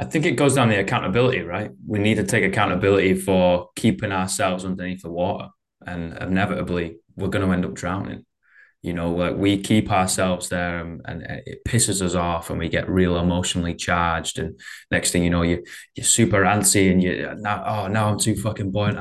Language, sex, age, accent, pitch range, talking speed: English, male, 10-29, British, 90-105 Hz, 210 wpm